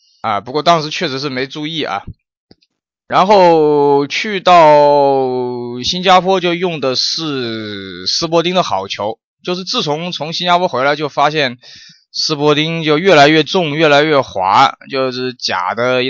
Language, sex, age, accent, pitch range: Chinese, male, 20-39, native, 130-170 Hz